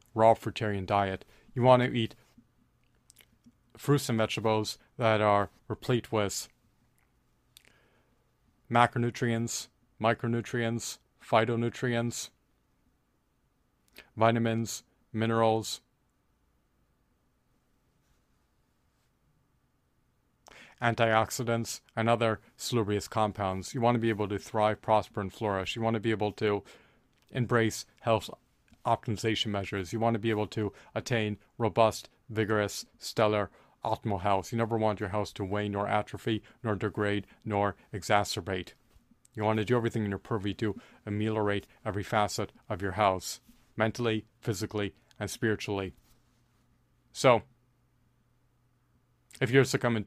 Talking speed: 110 wpm